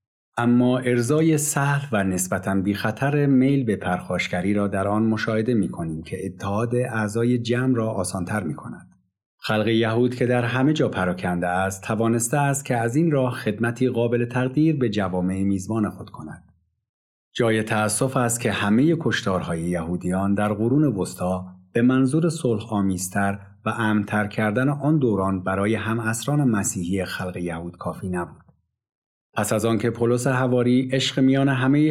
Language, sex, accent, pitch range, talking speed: English, male, Canadian, 95-125 Hz, 150 wpm